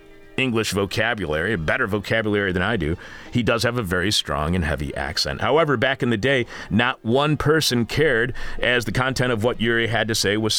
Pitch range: 100-125 Hz